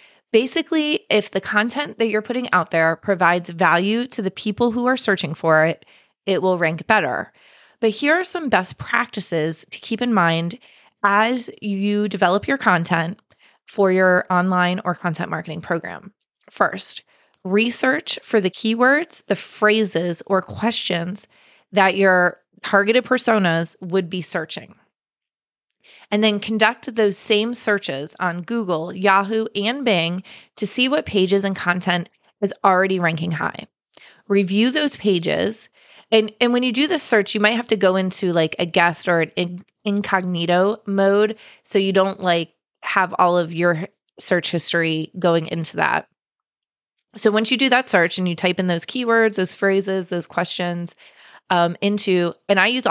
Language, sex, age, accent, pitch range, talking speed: English, female, 20-39, American, 175-220 Hz, 160 wpm